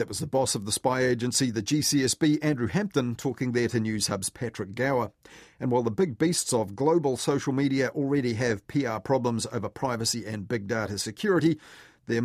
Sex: male